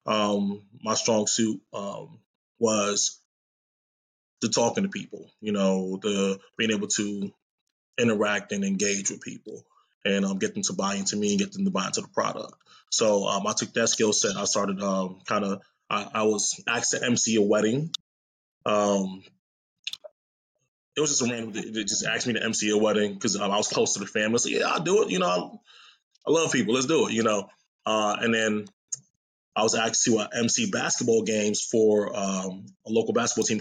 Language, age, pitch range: English, 20-39, 100-115 Hz